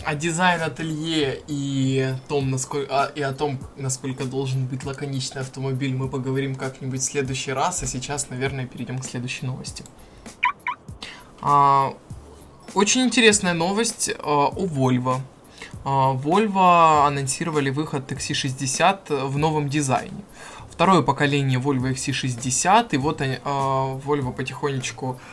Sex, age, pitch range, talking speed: male, 20-39, 130-145 Hz, 120 wpm